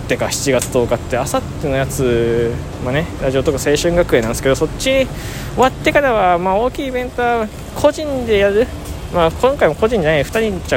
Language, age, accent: Japanese, 20-39, native